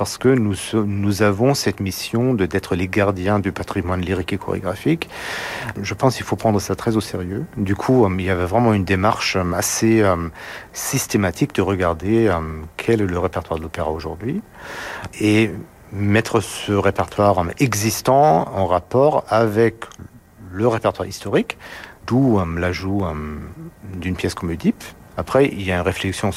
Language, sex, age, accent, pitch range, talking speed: French, male, 50-69, French, 90-110 Hz, 150 wpm